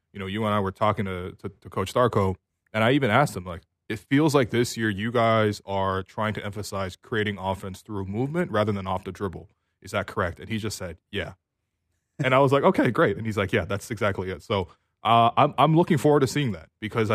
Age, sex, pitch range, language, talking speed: 20-39, male, 100-125 Hz, English, 240 wpm